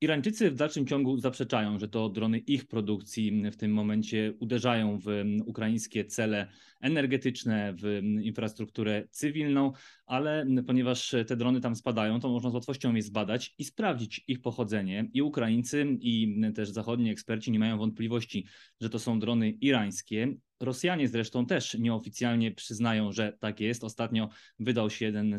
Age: 20-39